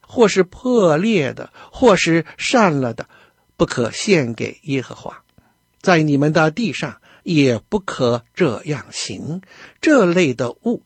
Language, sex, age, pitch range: Chinese, male, 60-79, 125-210 Hz